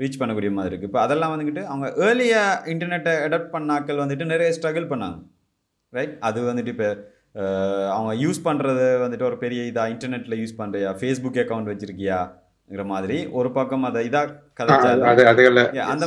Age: 30-49